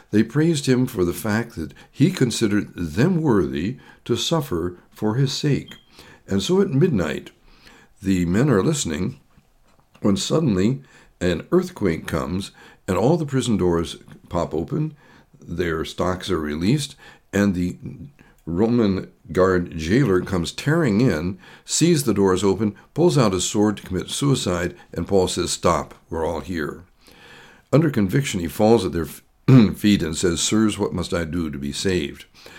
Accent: American